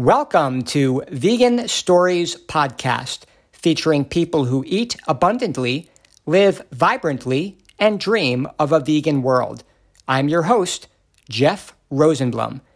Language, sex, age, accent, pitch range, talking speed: English, male, 50-69, American, 130-165 Hz, 110 wpm